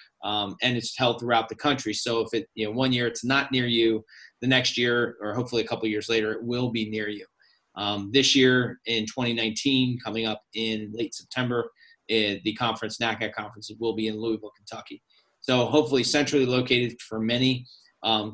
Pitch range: 110-125 Hz